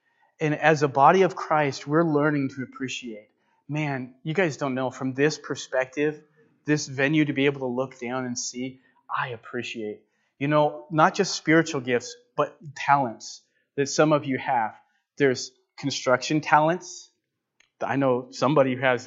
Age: 30-49